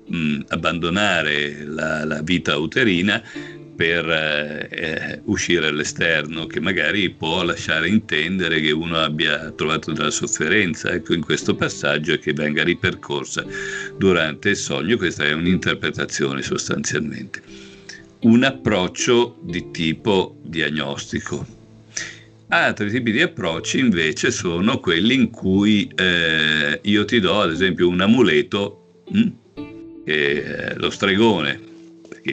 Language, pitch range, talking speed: Italian, 75-95 Hz, 115 wpm